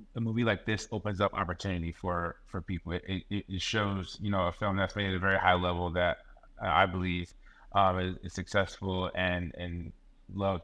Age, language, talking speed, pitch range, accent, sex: 30-49, English, 195 wpm, 90-100 Hz, American, male